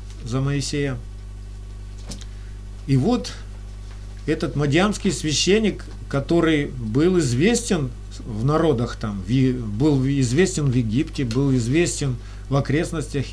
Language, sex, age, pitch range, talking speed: Russian, male, 40-59, 100-160 Hz, 95 wpm